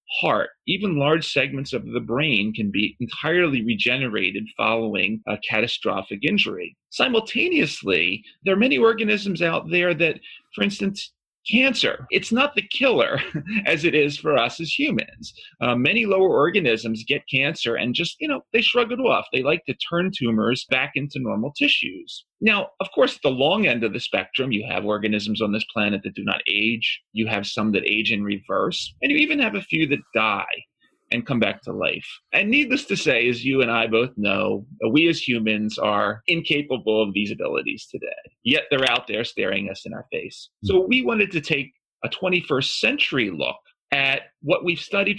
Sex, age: male, 30-49